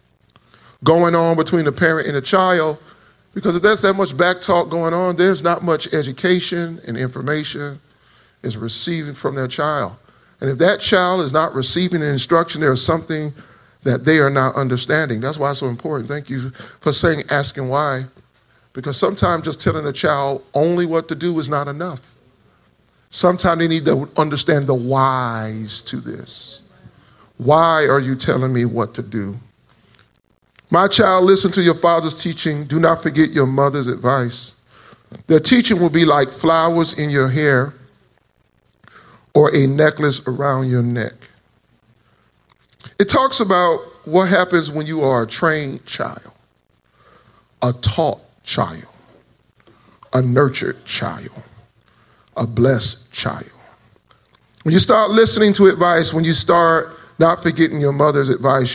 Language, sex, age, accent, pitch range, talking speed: English, male, 40-59, American, 130-170 Hz, 150 wpm